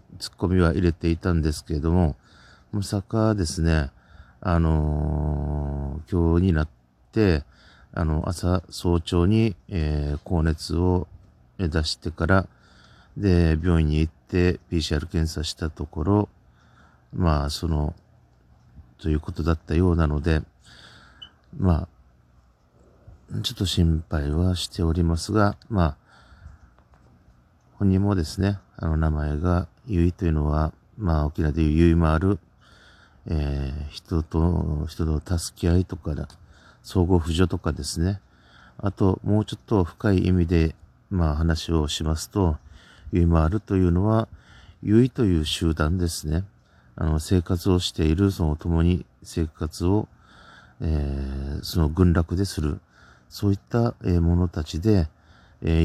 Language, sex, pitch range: Japanese, male, 80-95 Hz